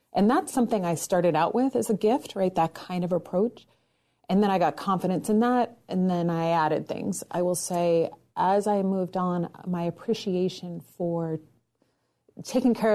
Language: English